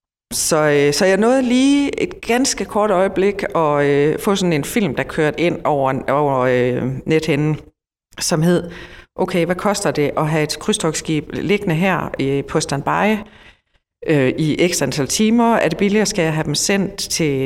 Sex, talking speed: female, 180 wpm